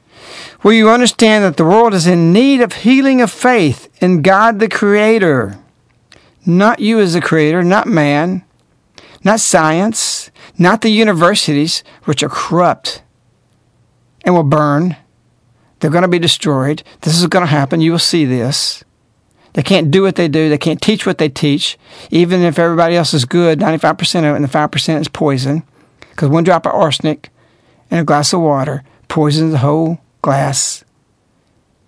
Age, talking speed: 60-79, 170 wpm